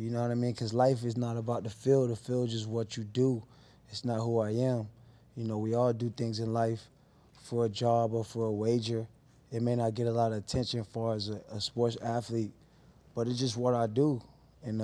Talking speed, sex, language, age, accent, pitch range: 245 wpm, male, English, 20-39, American, 110-120 Hz